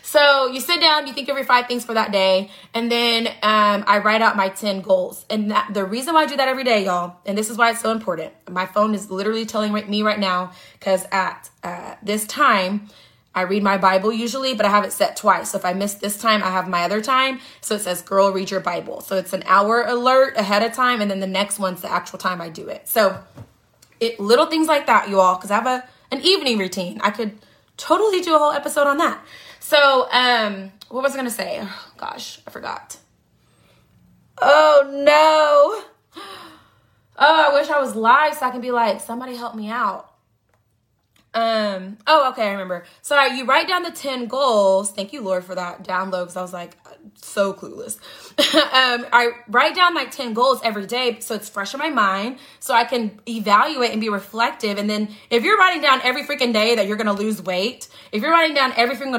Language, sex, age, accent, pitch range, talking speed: English, female, 20-39, American, 195-255 Hz, 220 wpm